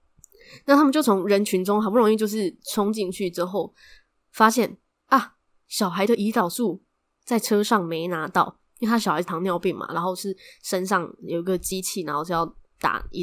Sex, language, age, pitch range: female, Chinese, 10-29, 180-220 Hz